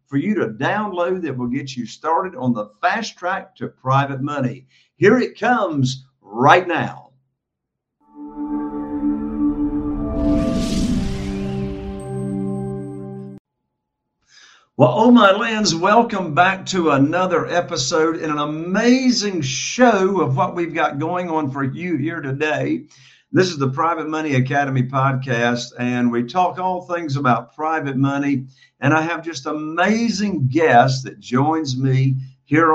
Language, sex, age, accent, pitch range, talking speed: English, male, 50-69, American, 125-170 Hz, 125 wpm